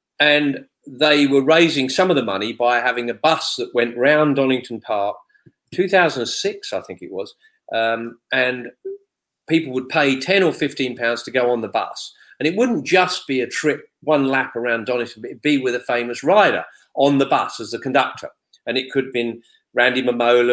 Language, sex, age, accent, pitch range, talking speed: English, male, 40-59, British, 115-155 Hz, 195 wpm